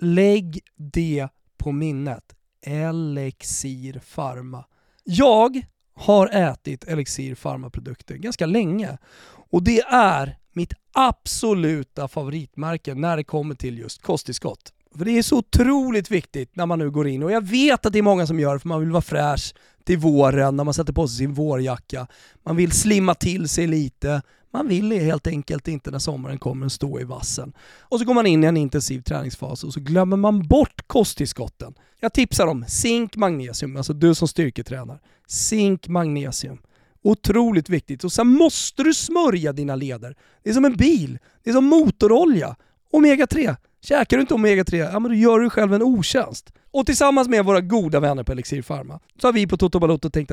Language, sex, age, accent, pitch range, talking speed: Swedish, male, 30-49, native, 140-220 Hz, 180 wpm